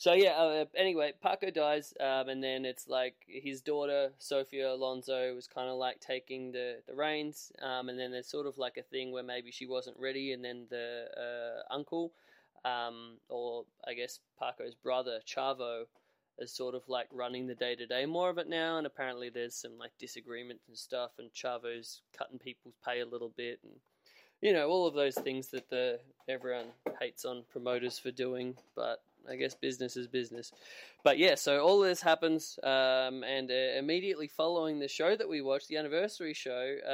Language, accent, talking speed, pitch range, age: English, Australian, 190 wpm, 125-155 Hz, 20-39